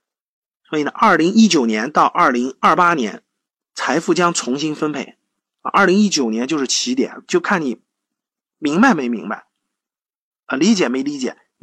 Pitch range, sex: 155-225 Hz, male